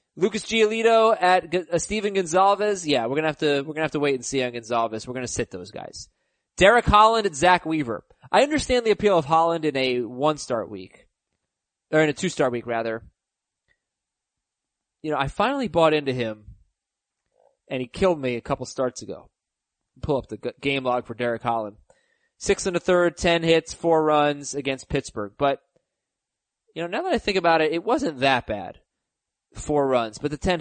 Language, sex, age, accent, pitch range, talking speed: English, male, 20-39, American, 125-180 Hz, 195 wpm